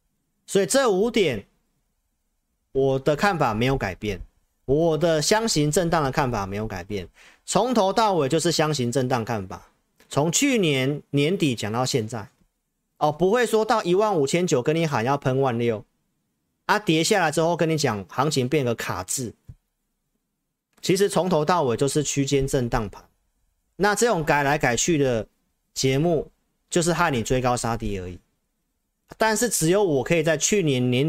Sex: male